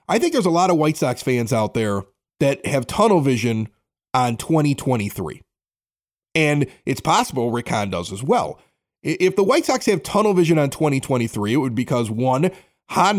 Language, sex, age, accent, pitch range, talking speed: English, male, 30-49, American, 130-190 Hz, 180 wpm